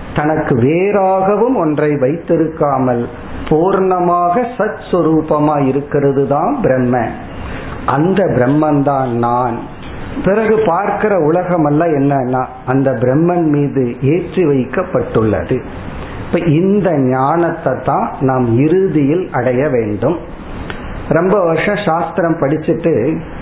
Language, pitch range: Tamil, 130-170 Hz